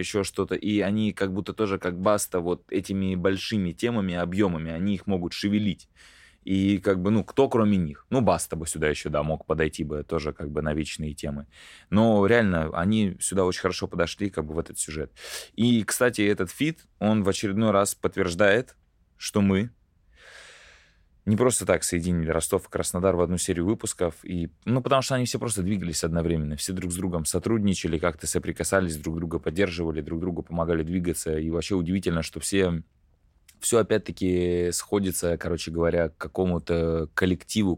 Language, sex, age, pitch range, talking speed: Russian, male, 20-39, 80-100 Hz, 175 wpm